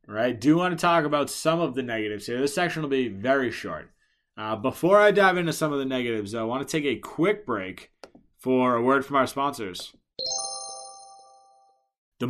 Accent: American